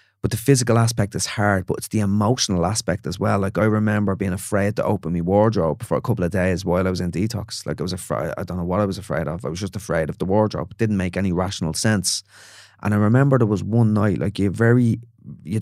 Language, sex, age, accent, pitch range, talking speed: English, male, 30-49, Irish, 95-110 Hz, 270 wpm